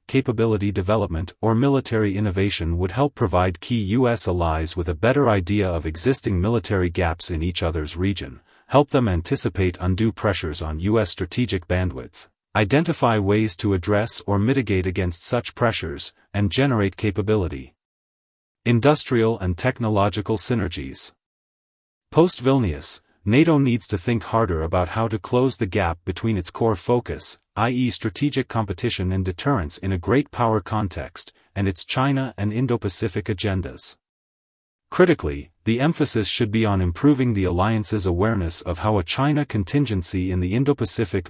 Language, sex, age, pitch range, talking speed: English, male, 40-59, 90-115 Hz, 145 wpm